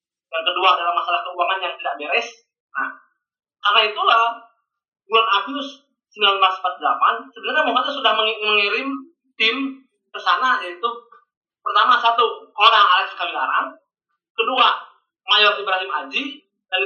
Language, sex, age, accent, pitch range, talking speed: Indonesian, male, 30-49, native, 195-290 Hz, 115 wpm